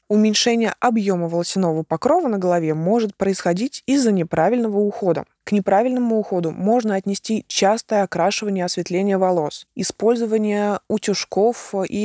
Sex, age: female, 20-39